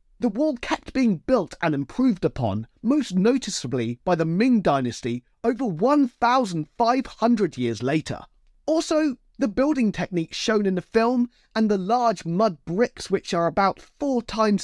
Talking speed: 150 wpm